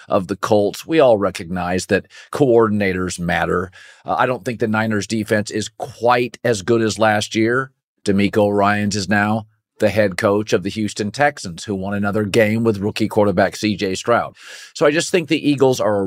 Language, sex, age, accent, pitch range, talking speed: English, male, 40-59, American, 105-130 Hz, 190 wpm